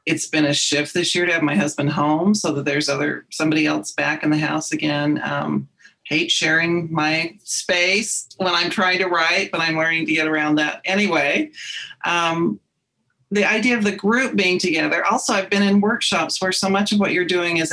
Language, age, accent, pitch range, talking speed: English, 40-59, American, 150-185 Hz, 205 wpm